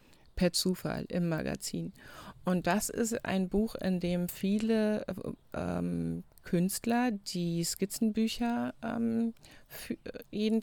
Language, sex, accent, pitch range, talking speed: German, female, German, 155-190 Hz, 105 wpm